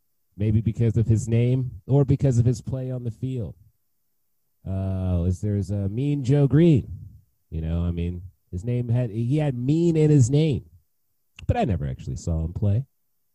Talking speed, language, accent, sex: 180 wpm, English, American, male